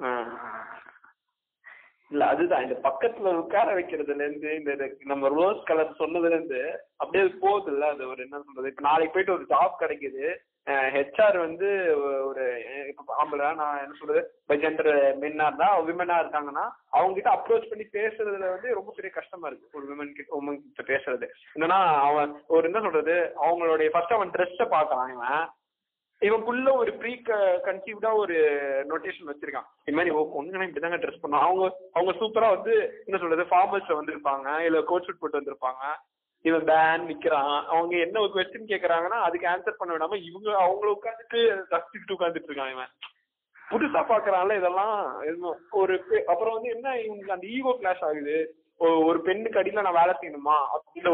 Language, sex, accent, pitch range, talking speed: Tamil, male, native, 150-220 Hz, 90 wpm